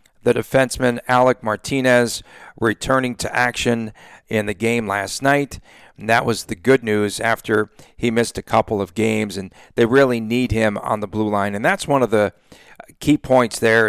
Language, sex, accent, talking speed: English, male, American, 180 wpm